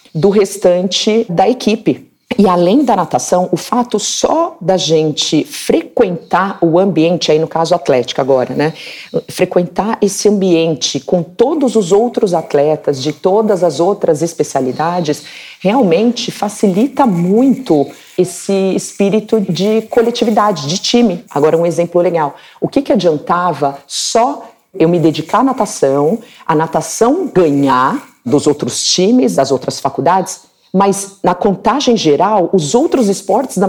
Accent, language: Brazilian, Portuguese